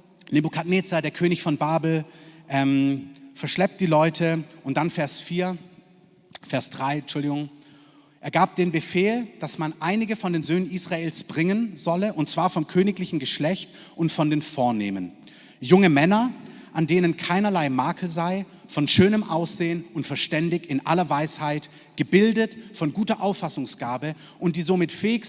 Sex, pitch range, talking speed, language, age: male, 150-190 Hz, 140 wpm, German, 30-49